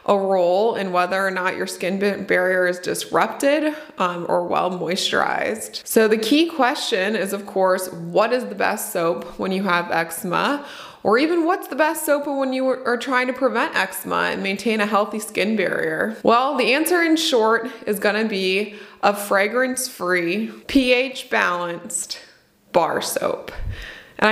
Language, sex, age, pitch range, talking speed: English, female, 20-39, 185-240 Hz, 165 wpm